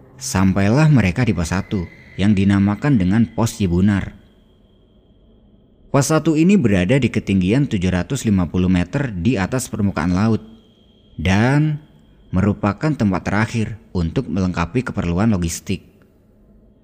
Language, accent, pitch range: Indonesian, native, 90-115 Hz